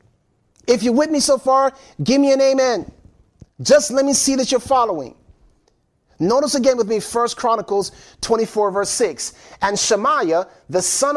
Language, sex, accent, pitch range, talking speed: English, male, American, 205-275 Hz, 160 wpm